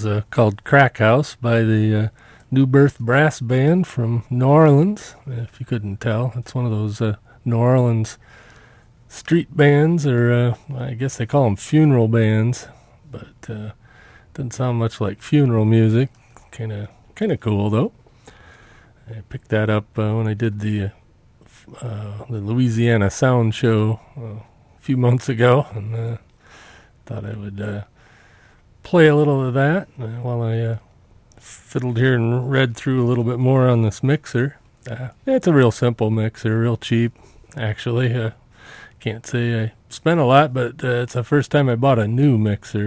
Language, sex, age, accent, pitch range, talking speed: English, male, 40-59, American, 110-130 Hz, 175 wpm